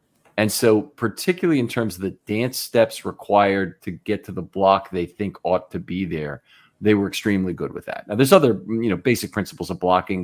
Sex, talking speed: male, 210 wpm